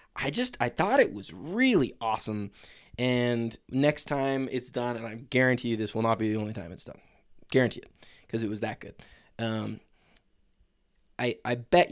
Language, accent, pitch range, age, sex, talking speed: English, American, 110-125 Hz, 20-39, male, 185 wpm